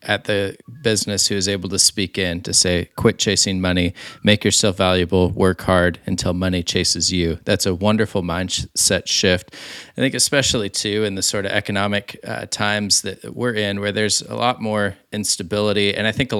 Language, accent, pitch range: English, American, 95-110 Hz